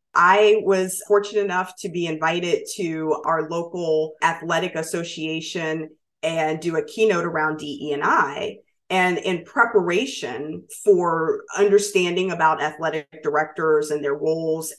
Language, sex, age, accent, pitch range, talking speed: English, female, 30-49, American, 155-210 Hz, 125 wpm